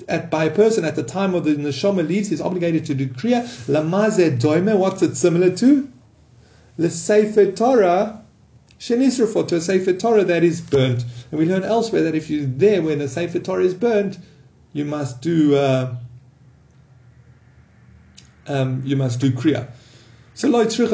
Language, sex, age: English, male, 30-49